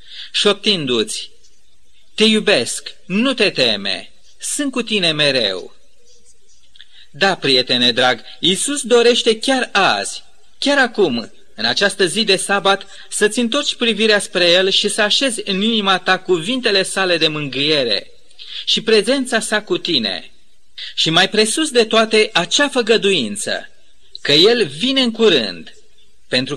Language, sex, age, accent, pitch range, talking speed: Romanian, male, 40-59, native, 165-235 Hz, 130 wpm